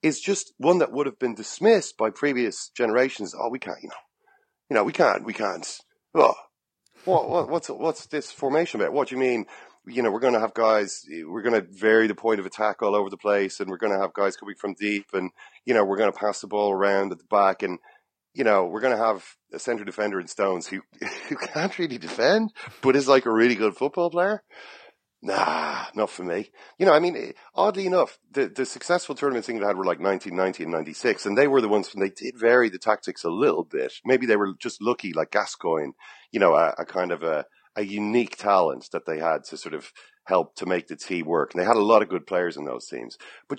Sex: male